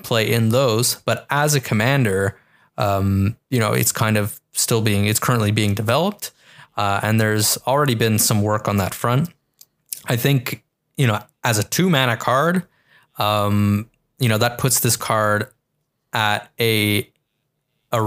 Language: English